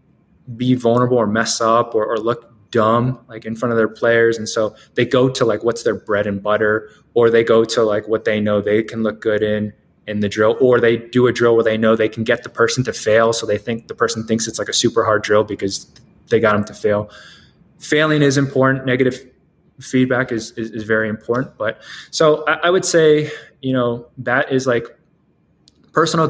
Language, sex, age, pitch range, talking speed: English, male, 20-39, 110-140 Hz, 220 wpm